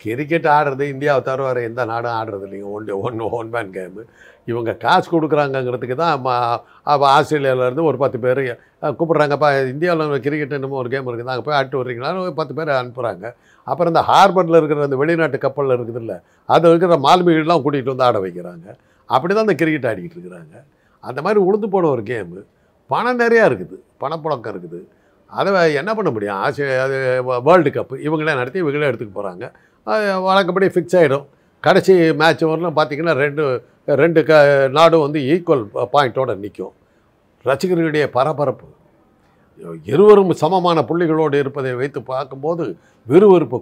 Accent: native